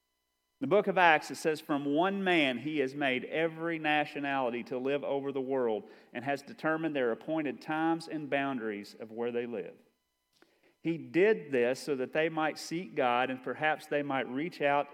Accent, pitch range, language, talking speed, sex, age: American, 145-190 Hz, English, 185 wpm, male, 40-59